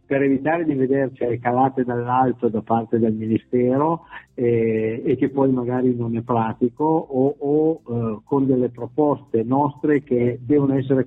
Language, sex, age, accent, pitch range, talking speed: Italian, male, 50-69, native, 120-150 Hz, 150 wpm